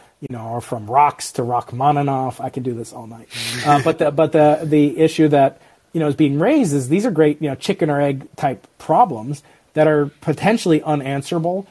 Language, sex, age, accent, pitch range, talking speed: English, male, 30-49, American, 145-185 Hz, 210 wpm